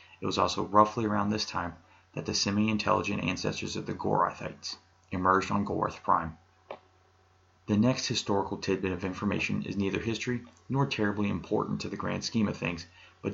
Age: 30-49